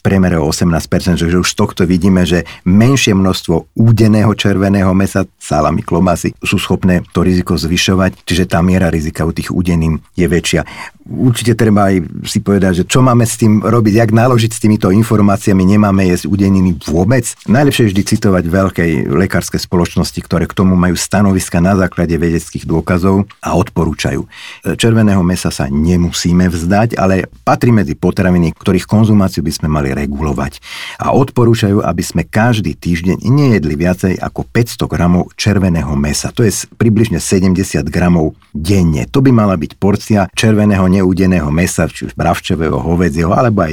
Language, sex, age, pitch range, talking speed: Slovak, male, 50-69, 85-105 Hz, 160 wpm